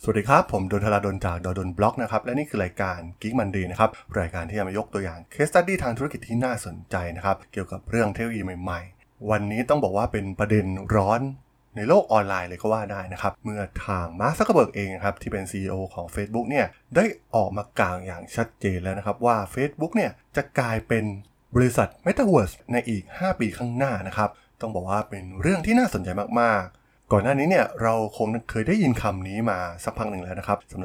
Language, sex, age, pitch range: Thai, male, 20-39, 95-120 Hz